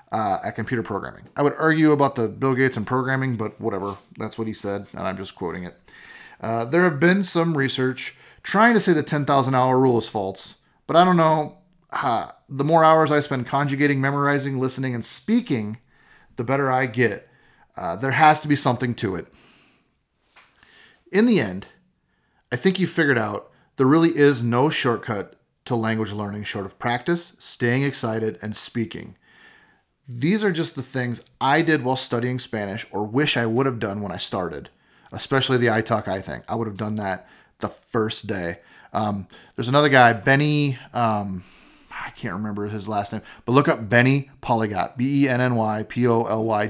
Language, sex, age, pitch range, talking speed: English, male, 30-49, 105-140 Hz, 190 wpm